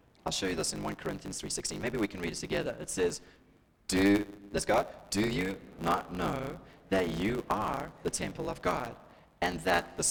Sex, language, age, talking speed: male, English, 30-49, 195 wpm